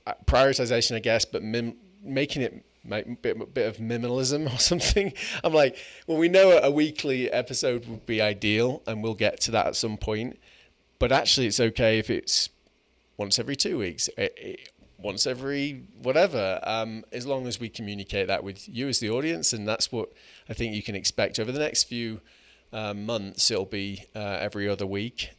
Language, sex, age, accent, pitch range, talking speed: English, male, 30-49, British, 105-125 Hz, 180 wpm